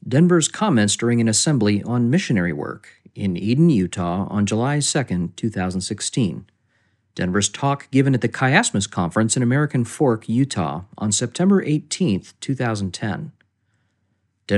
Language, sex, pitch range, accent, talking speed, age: English, male, 105-150 Hz, American, 125 wpm, 40-59